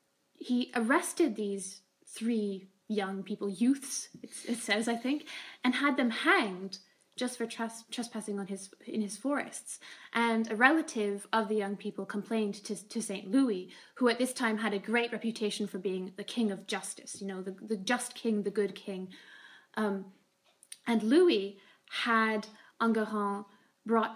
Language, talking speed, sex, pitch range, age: English, 160 wpm, female, 200-235 Hz, 20-39